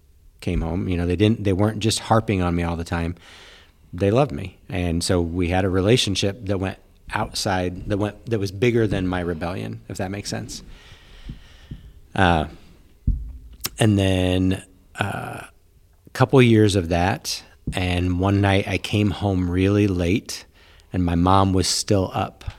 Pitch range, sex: 85-105 Hz, male